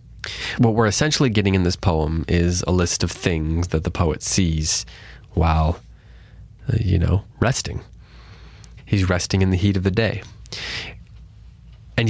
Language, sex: English, male